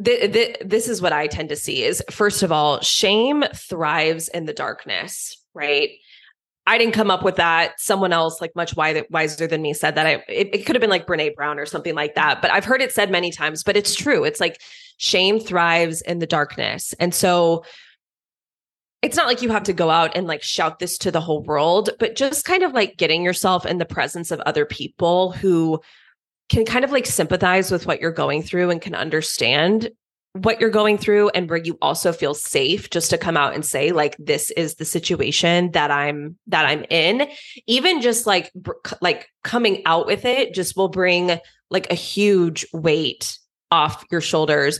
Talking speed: 205 wpm